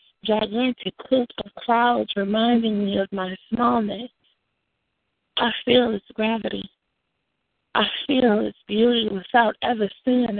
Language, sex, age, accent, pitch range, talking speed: English, female, 30-49, American, 210-245 Hz, 115 wpm